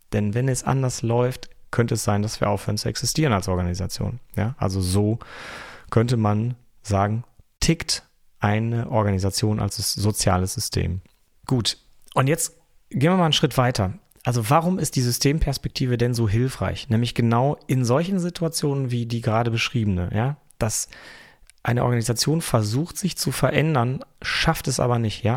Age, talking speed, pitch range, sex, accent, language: 30-49, 160 wpm, 110-135 Hz, male, German, German